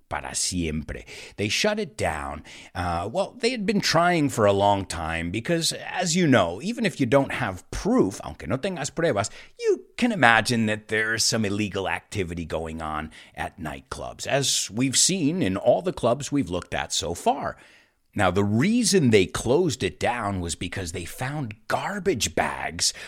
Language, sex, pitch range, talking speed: English, male, 90-140 Hz, 175 wpm